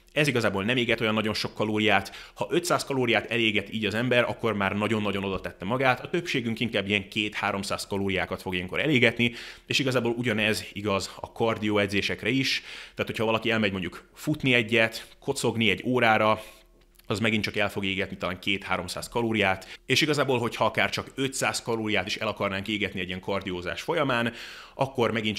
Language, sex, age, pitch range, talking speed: Hungarian, male, 30-49, 100-125 Hz, 175 wpm